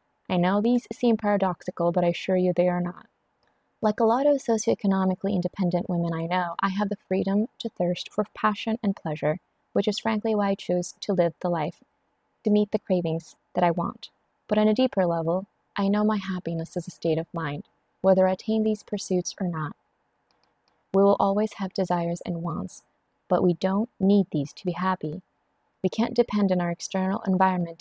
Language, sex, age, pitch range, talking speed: English, female, 20-39, 175-205 Hz, 195 wpm